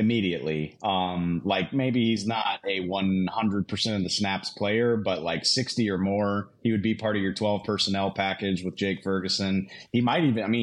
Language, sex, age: English, male, 30-49